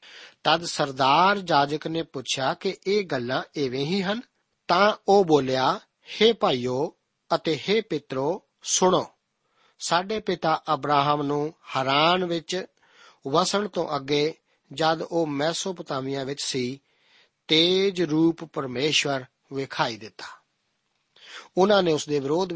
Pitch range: 145-185 Hz